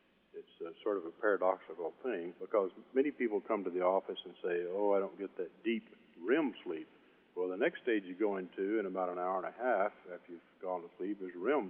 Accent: American